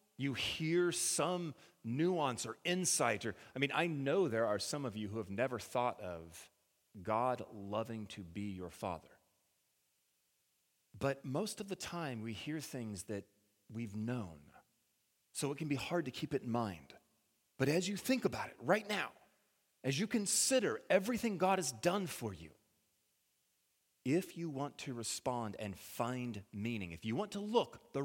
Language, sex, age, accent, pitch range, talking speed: English, male, 40-59, American, 95-145 Hz, 170 wpm